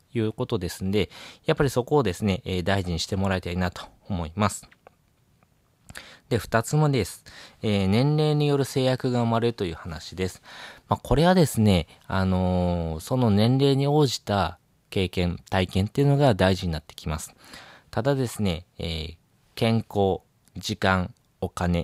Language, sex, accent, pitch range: Japanese, male, native, 90-125 Hz